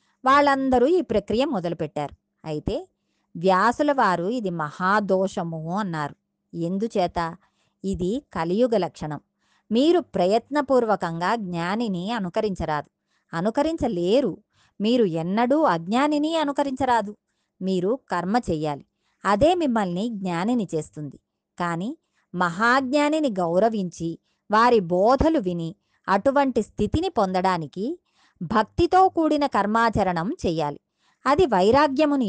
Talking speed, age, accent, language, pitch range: 80 wpm, 20-39, native, Telugu, 175-255 Hz